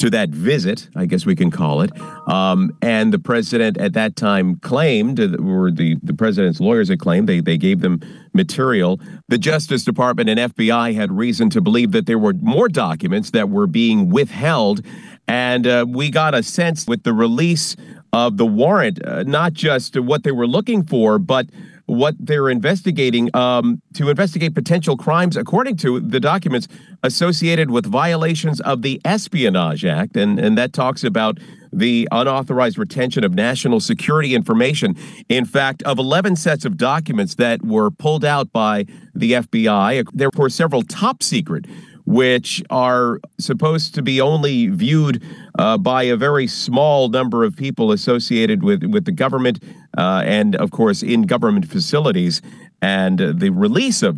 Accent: American